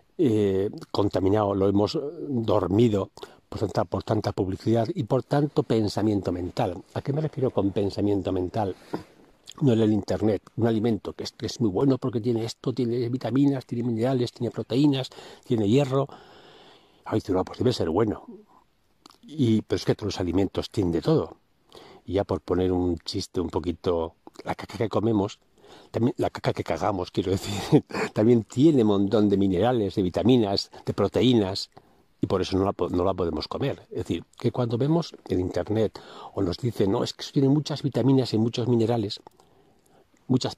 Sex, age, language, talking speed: male, 60-79, Spanish, 175 wpm